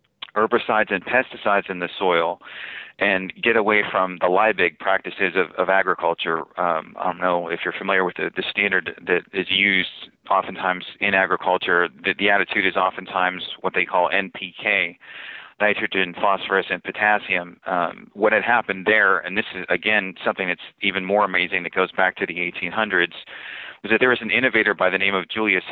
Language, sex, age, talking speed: English, male, 40-59, 180 wpm